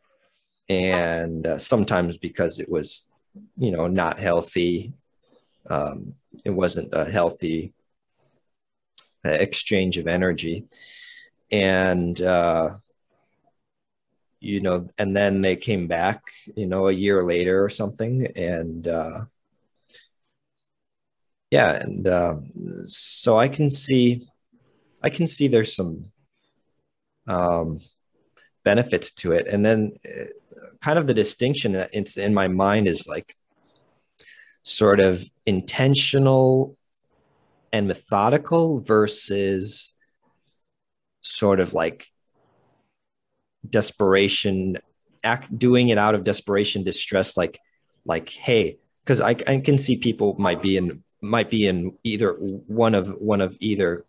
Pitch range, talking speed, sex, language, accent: 90-120 Hz, 115 wpm, male, English, American